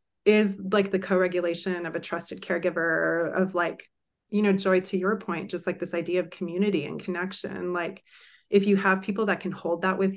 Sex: female